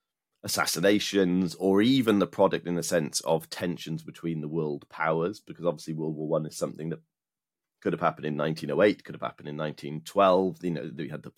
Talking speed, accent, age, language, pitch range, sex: 170 wpm, British, 30-49, English, 75-90 Hz, male